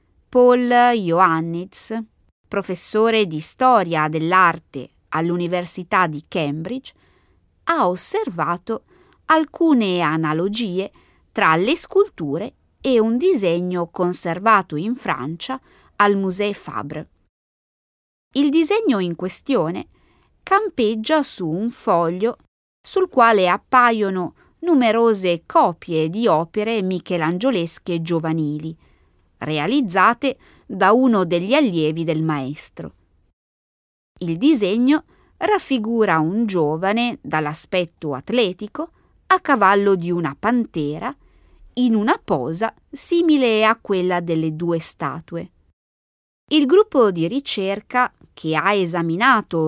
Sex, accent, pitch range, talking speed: female, native, 165-245 Hz, 95 wpm